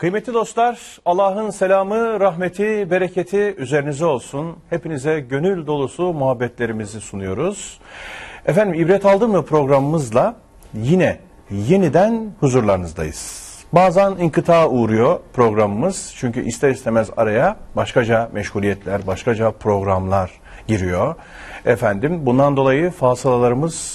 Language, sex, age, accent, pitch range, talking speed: Turkish, male, 40-59, native, 105-170 Hz, 95 wpm